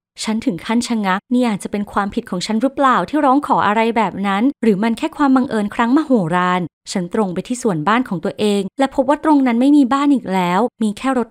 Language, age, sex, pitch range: Thai, 20-39, female, 185-245 Hz